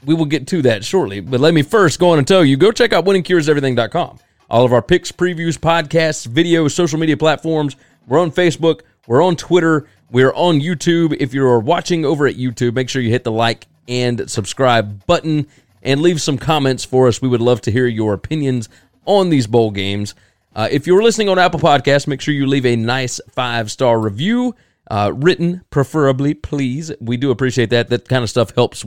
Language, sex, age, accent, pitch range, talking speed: English, male, 30-49, American, 120-160 Hz, 205 wpm